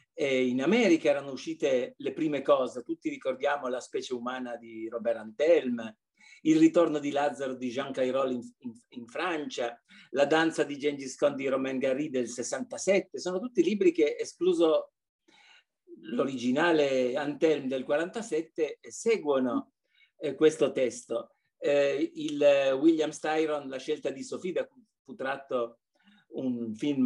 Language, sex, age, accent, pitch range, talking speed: Italian, male, 50-69, native, 135-210 Hz, 140 wpm